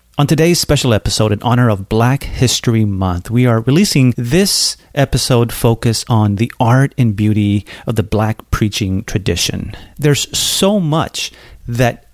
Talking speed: 150 wpm